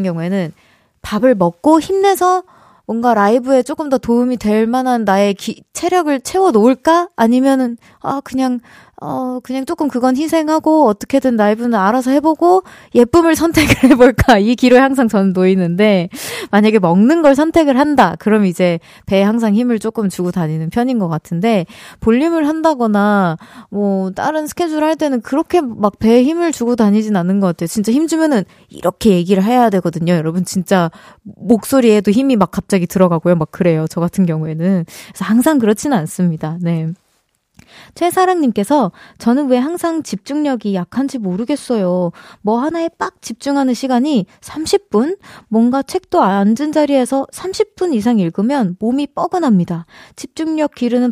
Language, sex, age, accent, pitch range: Korean, female, 20-39, native, 200-295 Hz